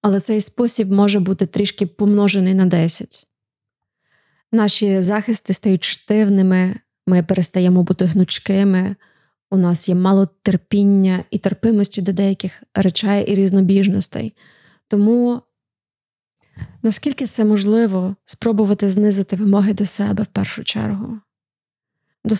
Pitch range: 190-210 Hz